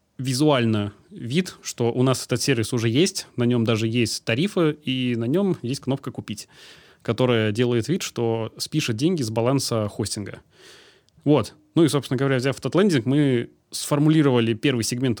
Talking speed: 160 wpm